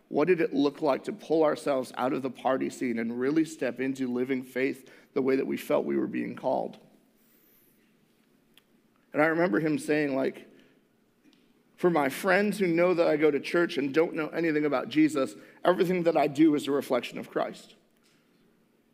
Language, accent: English, American